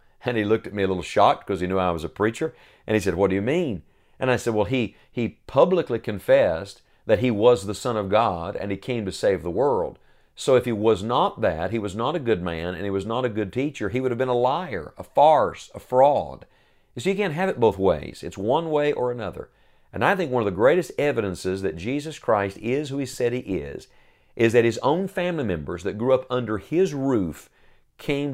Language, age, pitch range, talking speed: English, 40-59, 100-130 Hz, 245 wpm